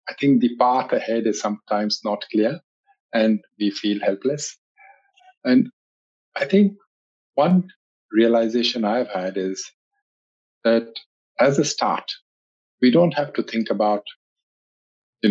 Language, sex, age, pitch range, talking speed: English, male, 50-69, 105-145 Hz, 125 wpm